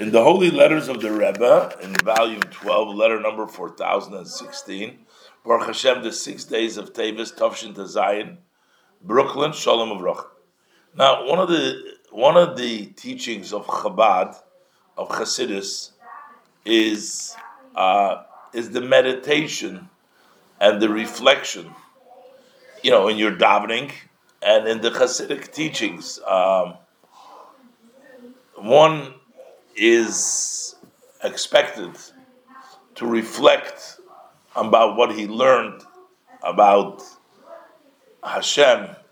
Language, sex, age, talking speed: English, male, 50-69, 110 wpm